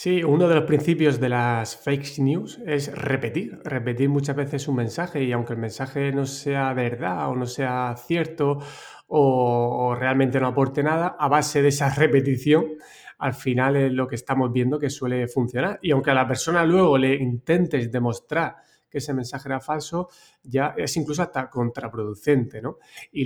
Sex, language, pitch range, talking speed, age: male, Spanish, 130-150 Hz, 180 wpm, 30-49